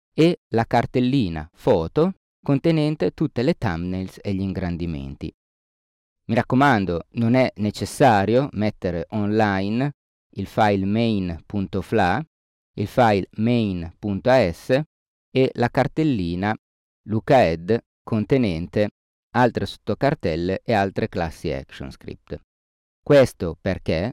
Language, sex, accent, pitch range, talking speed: Italian, male, native, 90-120 Hz, 90 wpm